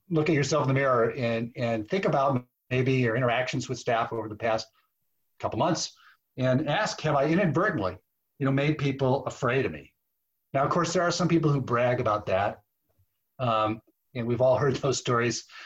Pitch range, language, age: 120-150 Hz, English, 40-59